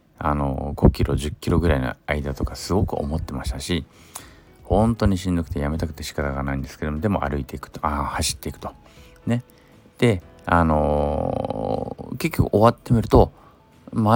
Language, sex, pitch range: Japanese, male, 75-115 Hz